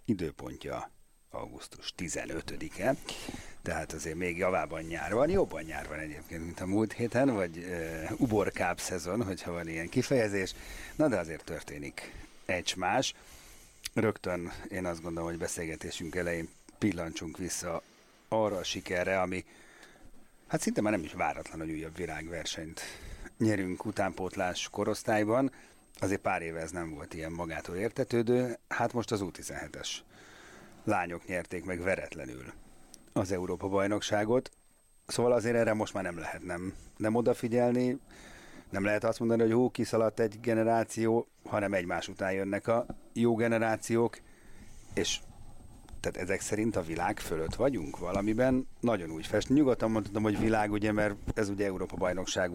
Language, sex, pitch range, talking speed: Hungarian, male, 85-115 Hz, 135 wpm